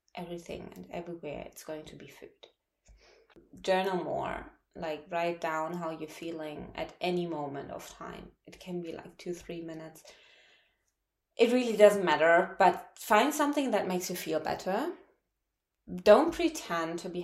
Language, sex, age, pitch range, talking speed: English, female, 20-39, 165-220 Hz, 155 wpm